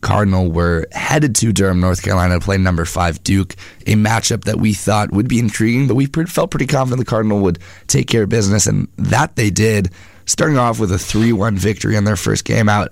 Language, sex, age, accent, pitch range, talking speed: English, male, 30-49, American, 95-115 Hz, 220 wpm